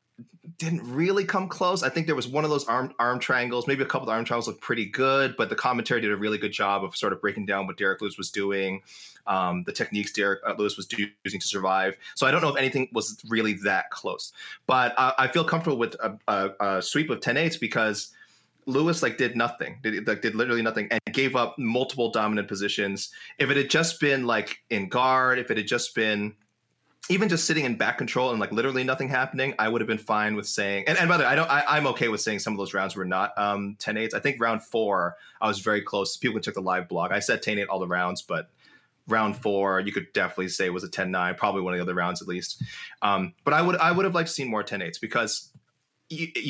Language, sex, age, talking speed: English, male, 20-39, 250 wpm